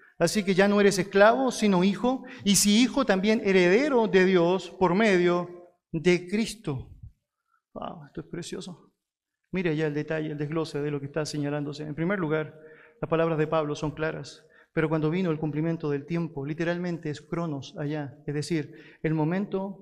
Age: 40-59